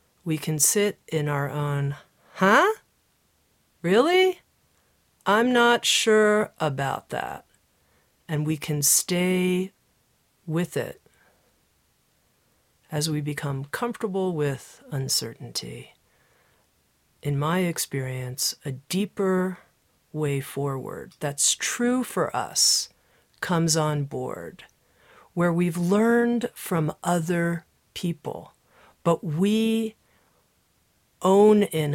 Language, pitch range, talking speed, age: English, 145-190 Hz, 90 wpm, 40-59